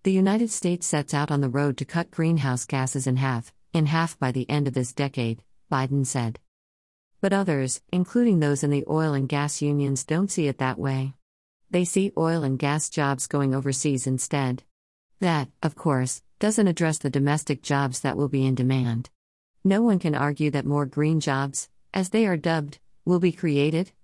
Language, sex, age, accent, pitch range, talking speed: English, female, 50-69, American, 130-160 Hz, 190 wpm